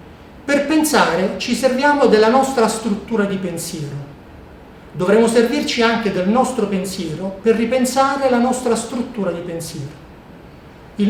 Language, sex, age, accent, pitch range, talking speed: Italian, male, 40-59, native, 180-235 Hz, 125 wpm